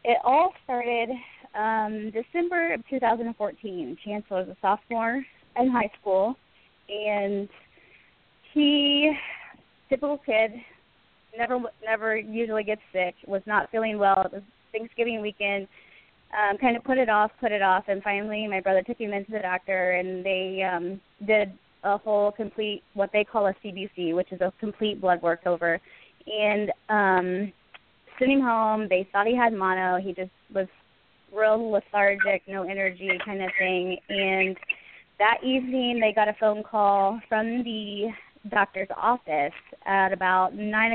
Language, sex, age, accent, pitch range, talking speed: English, female, 20-39, American, 190-225 Hz, 150 wpm